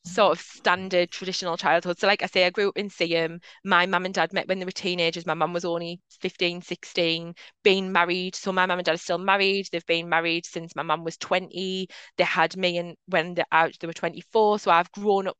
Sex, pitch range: female, 170-190 Hz